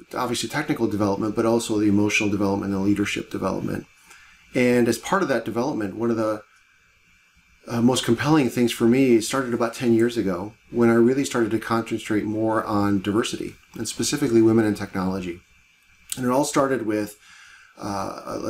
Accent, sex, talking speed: American, male, 165 wpm